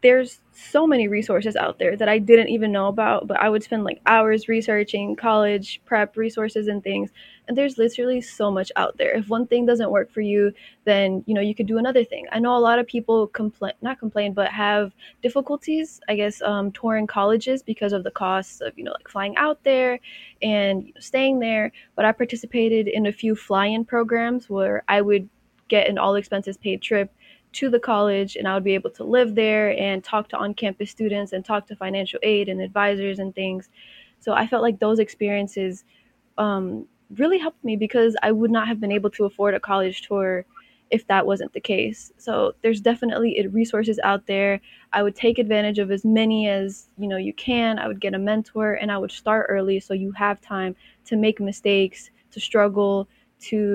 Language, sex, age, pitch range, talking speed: English, female, 10-29, 200-230 Hz, 205 wpm